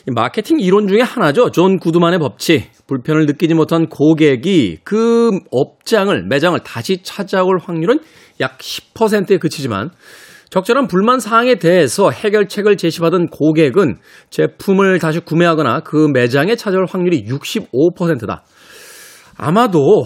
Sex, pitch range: male, 140-195 Hz